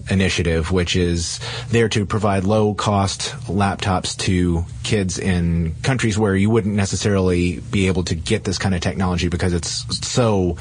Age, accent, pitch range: 30-49, American, 90-115 Hz